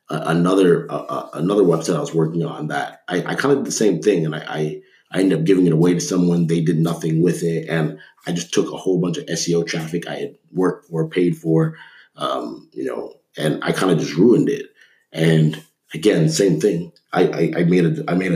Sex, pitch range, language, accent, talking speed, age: male, 80-90 Hz, English, American, 230 wpm, 30-49